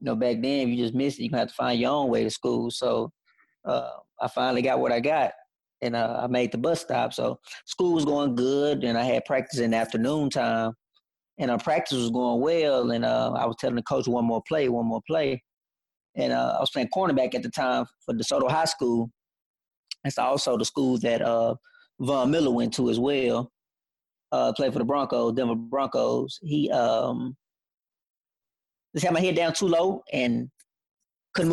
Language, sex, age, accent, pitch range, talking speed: English, male, 30-49, American, 115-140 Hz, 210 wpm